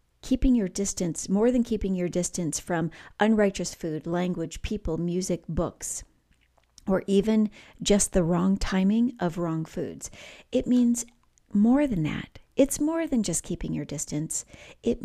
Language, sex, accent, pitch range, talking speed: English, female, American, 160-210 Hz, 150 wpm